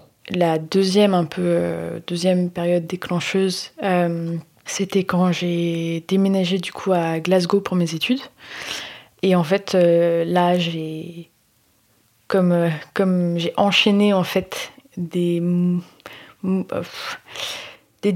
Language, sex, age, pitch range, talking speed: French, female, 20-39, 170-190 Hz, 115 wpm